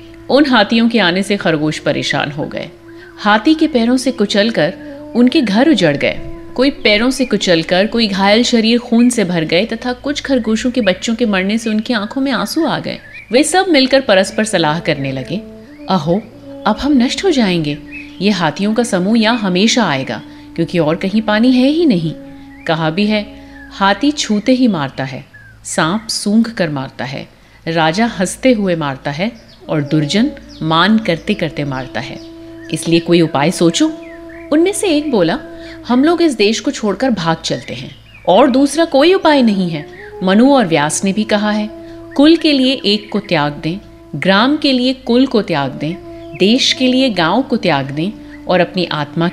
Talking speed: 135 wpm